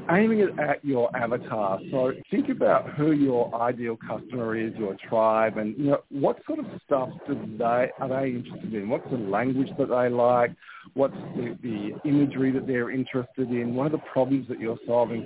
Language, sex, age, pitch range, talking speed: English, male, 50-69, 110-145 Hz, 195 wpm